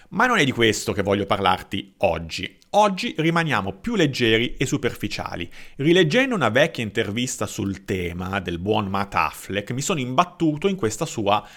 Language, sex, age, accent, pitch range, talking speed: Italian, male, 30-49, native, 100-155 Hz, 160 wpm